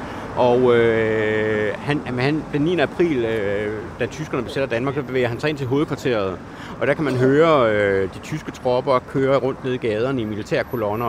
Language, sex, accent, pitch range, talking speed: Danish, male, native, 110-135 Hz, 170 wpm